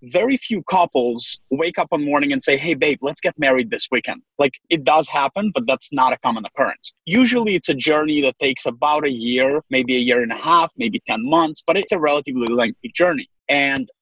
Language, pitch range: English, 135-195 Hz